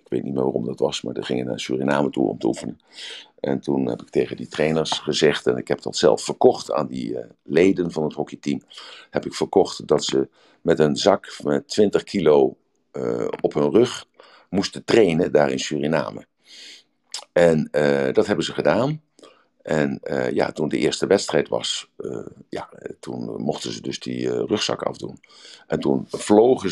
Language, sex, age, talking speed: Dutch, male, 50-69, 190 wpm